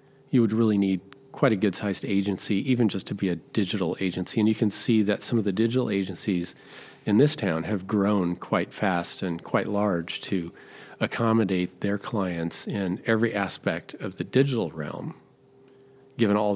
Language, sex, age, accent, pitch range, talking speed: English, male, 40-59, American, 95-120 Hz, 175 wpm